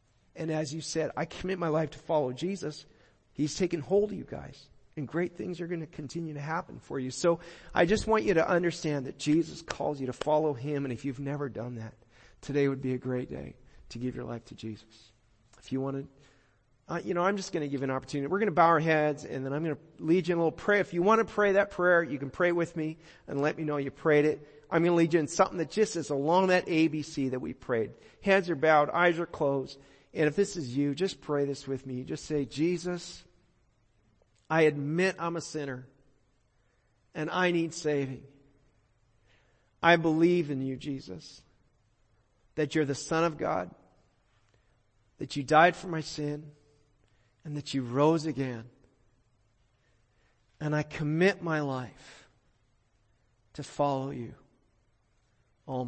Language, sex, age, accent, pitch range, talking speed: English, male, 40-59, American, 120-165 Hz, 200 wpm